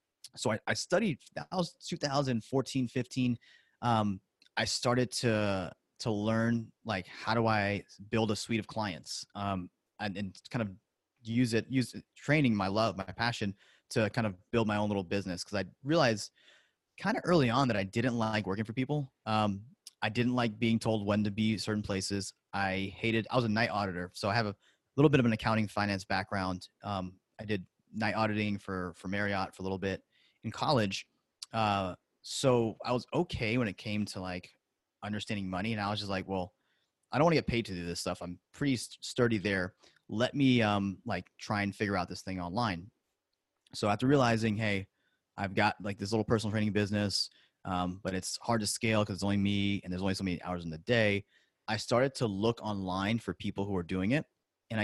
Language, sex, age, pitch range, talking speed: English, male, 30-49, 95-115 Hz, 205 wpm